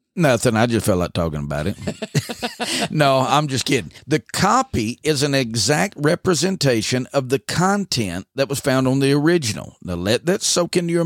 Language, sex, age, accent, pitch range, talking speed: English, male, 50-69, American, 120-185 Hz, 180 wpm